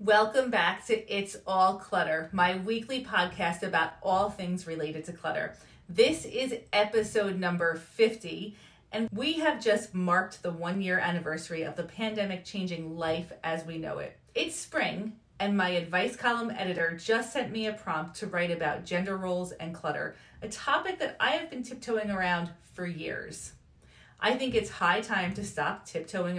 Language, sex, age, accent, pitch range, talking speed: English, female, 30-49, American, 170-220 Hz, 170 wpm